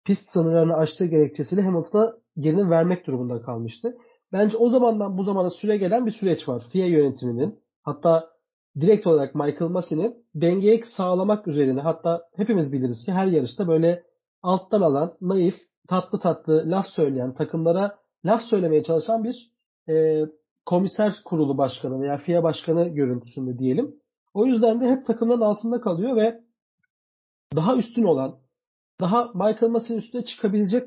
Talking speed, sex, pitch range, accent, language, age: 140 wpm, male, 160-225 Hz, native, Turkish, 40-59